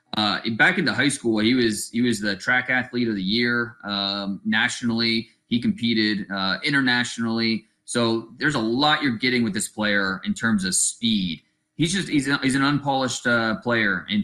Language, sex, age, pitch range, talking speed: English, male, 20-39, 110-155 Hz, 185 wpm